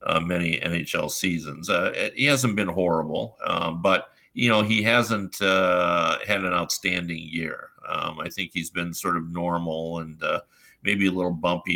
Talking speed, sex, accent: 175 wpm, male, American